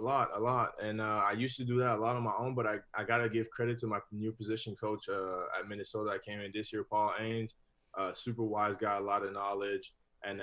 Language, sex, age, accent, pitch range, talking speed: English, male, 20-39, American, 95-110 Hz, 270 wpm